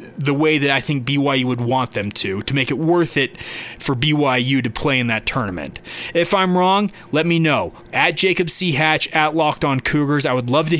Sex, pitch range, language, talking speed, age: male, 140-165 Hz, English, 220 wpm, 20-39